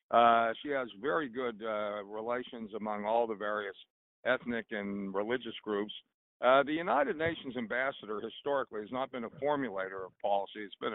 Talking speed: 165 wpm